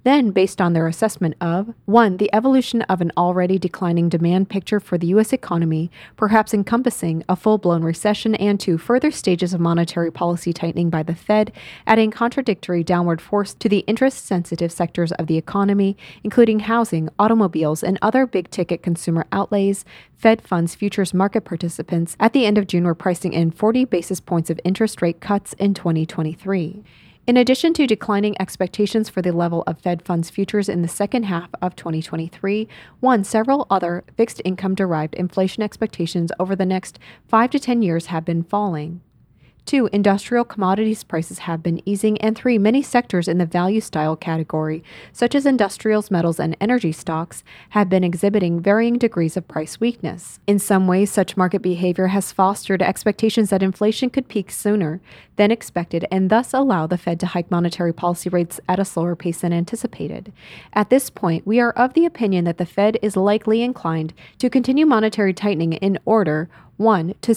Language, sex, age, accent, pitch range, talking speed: English, female, 20-39, American, 170-215 Hz, 175 wpm